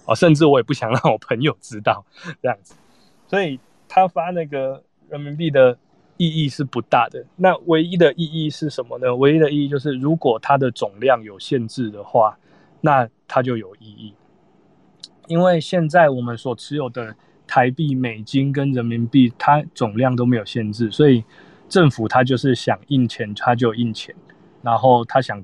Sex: male